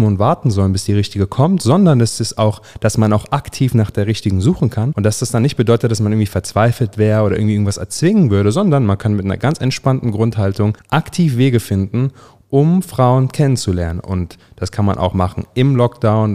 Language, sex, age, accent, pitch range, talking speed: German, male, 30-49, German, 100-125 Hz, 215 wpm